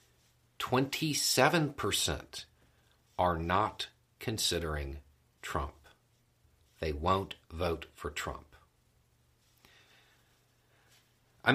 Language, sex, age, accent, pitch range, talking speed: English, male, 50-69, American, 85-115 Hz, 50 wpm